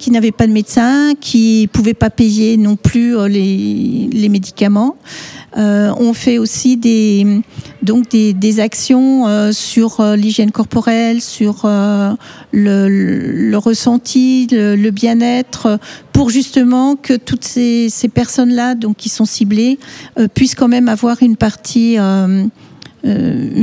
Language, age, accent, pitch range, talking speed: French, 50-69, French, 215-245 Hz, 145 wpm